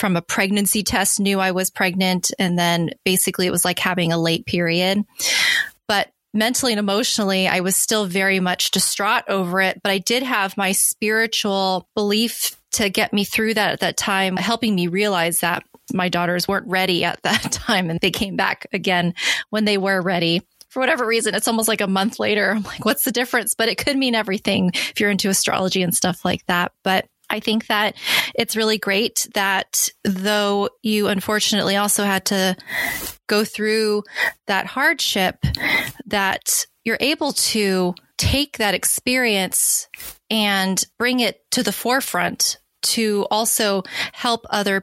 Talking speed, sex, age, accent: 170 wpm, female, 20-39, American